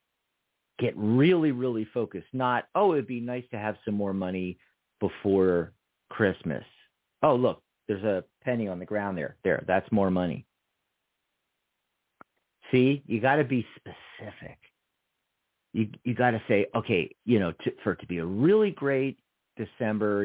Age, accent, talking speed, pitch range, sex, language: 50-69, American, 155 wpm, 100-130 Hz, male, English